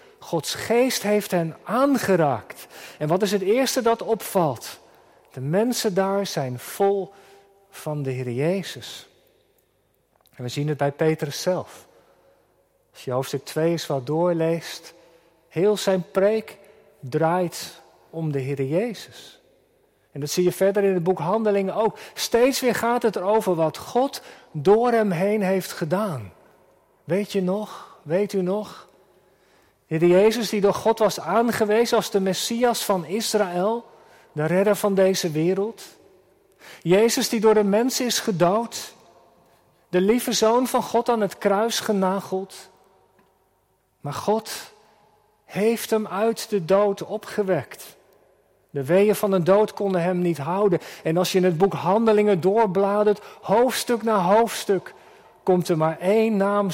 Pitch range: 175-220 Hz